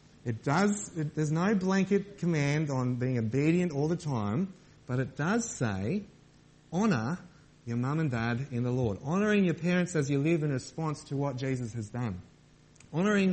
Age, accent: 30-49, Australian